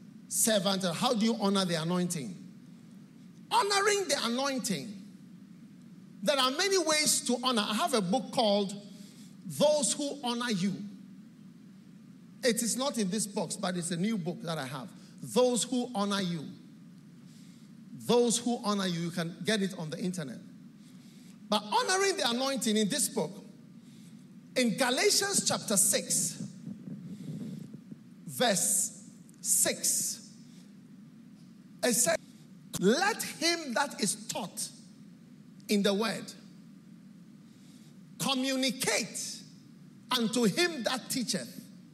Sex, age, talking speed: male, 50-69, 115 wpm